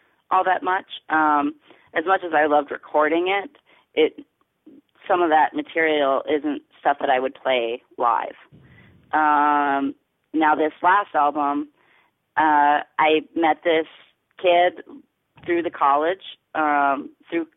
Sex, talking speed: female, 130 wpm